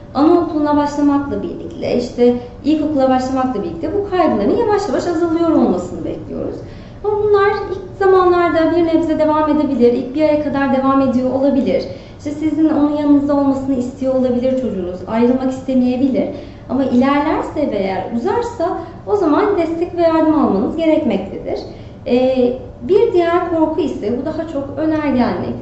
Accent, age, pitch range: native, 30-49, 245-320 Hz